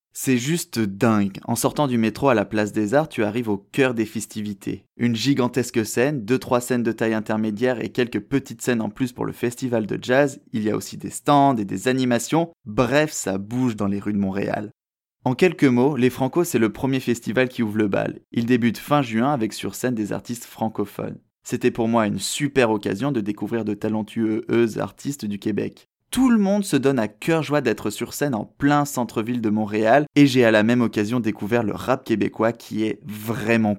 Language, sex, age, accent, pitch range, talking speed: French, male, 20-39, French, 110-130 Hz, 215 wpm